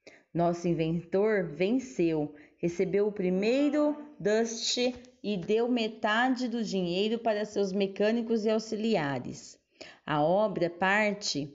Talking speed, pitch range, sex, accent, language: 100 wpm, 180-235 Hz, female, Brazilian, Portuguese